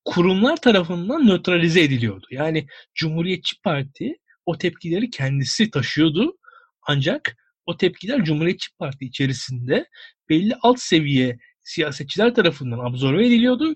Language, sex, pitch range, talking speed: Turkish, male, 150-235 Hz, 105 wpm